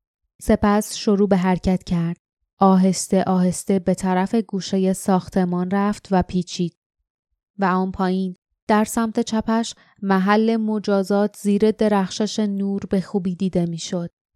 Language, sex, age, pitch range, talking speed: Persian, female, 20-39, 175-200 Hz, 120 wpm